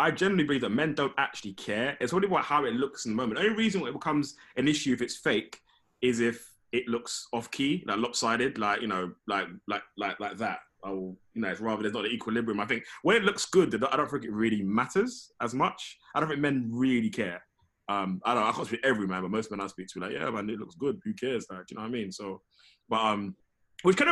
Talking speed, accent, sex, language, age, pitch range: 275 wpm, British, male, English, 20-39, 100-155 Hz